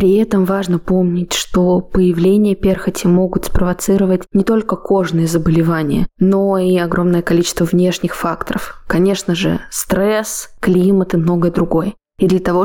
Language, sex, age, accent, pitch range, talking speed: Russian, female, 20-39, native, 170-190 Hz, 140 wpm